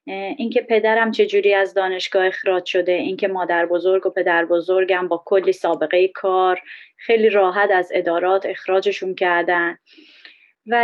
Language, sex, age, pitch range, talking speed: Persian, female, 30-49, 185-225 Hz, 140 wpm